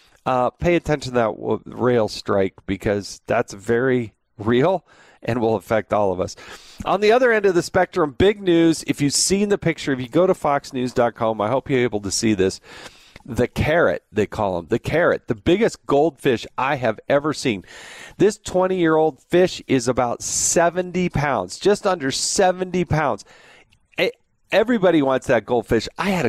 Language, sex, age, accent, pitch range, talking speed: English, male, 40-59, American, 120-160 Hz, 170 wpm